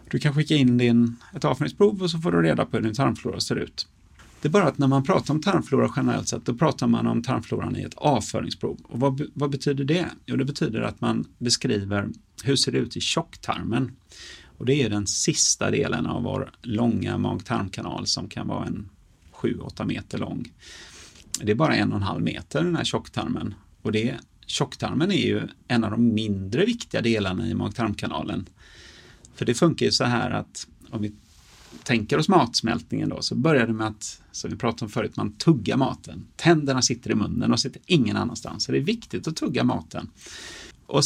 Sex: male